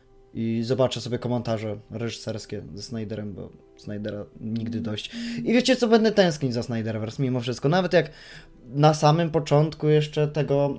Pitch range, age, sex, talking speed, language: 125-175 Hz, 20-39, male, 150 wpm, Polish